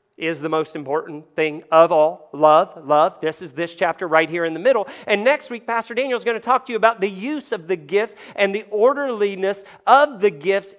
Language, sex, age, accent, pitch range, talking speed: English, male, 40-59, American, 180-240 Hz, 230 wpm